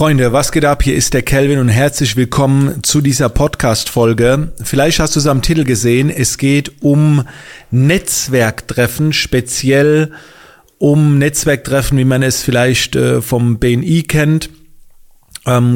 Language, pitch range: German, 120-150 Hz